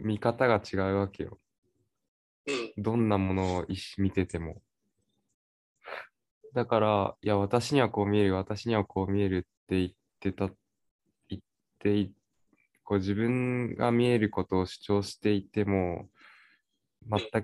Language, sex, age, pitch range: Japanese, male, 20-39, 95-110 Hz